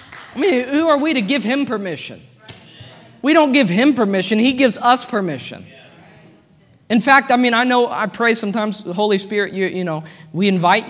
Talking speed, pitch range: 195 wpm, 175-245 Hz